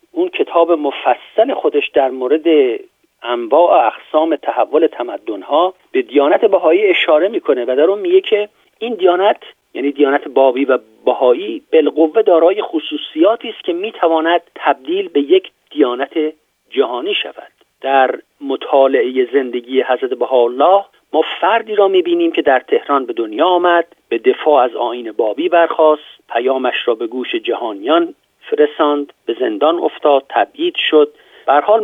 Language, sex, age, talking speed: Persian, male, 50-69, 135 wpm